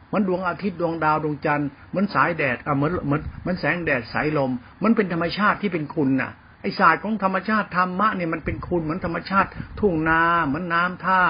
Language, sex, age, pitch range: Thai, male, 60-79, 140-185 Hz